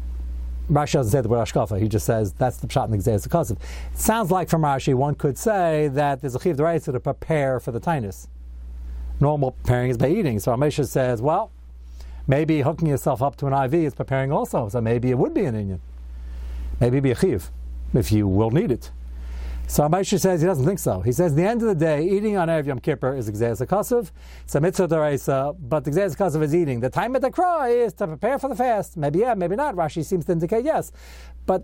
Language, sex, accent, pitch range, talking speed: English, male, American, 115-185 Hz, 230 wpm